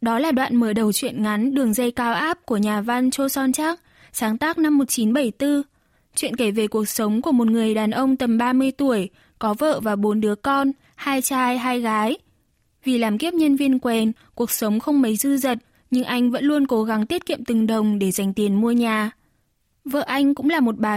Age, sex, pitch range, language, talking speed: 10-29, female, 220-275 Hz, Vietnamese, 220 wpm